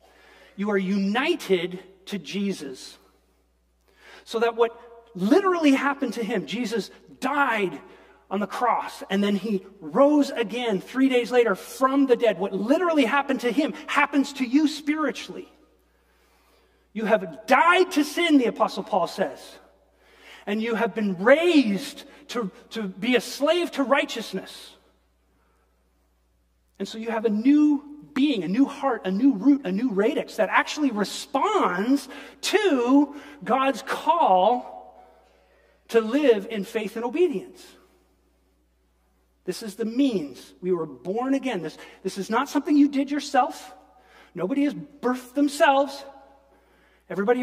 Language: English